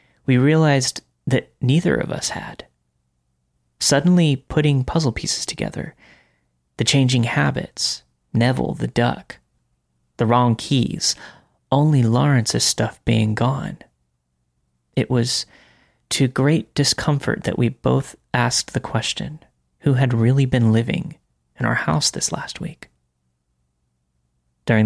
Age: 30-49